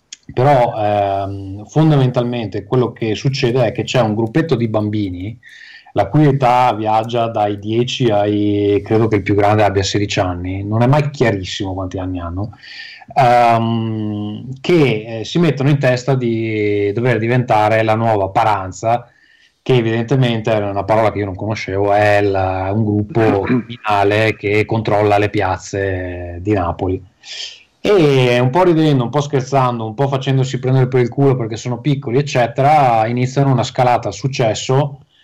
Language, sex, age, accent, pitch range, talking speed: Italian, male, 30-49, native, 105-130 Hz, 155 wpm